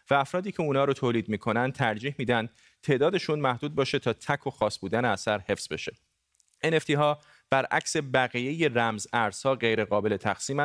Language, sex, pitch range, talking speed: Persian, male, 110-145 Hz, 165 wpm